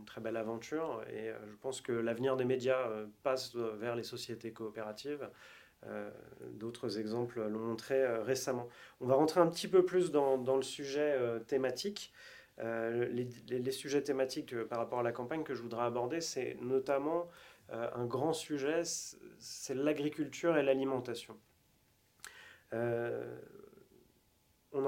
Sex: male